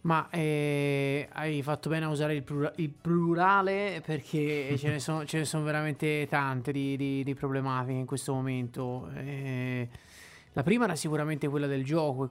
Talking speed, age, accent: 155 wpm, 30-49, native